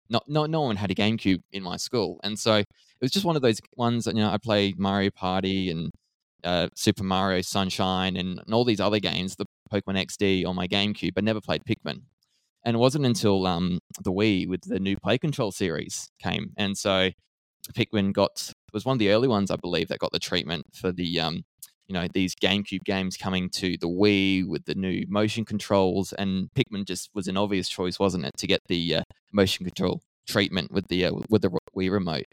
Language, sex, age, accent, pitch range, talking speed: English, male, 20-39, Australian, 95-110 Hz, 215 wpm